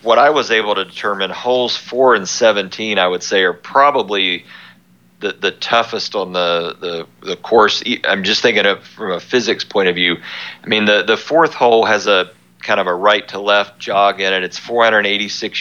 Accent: American